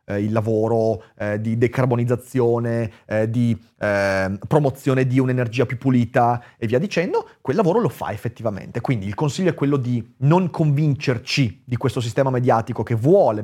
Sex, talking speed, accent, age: male, 155 wpm, native, 30-49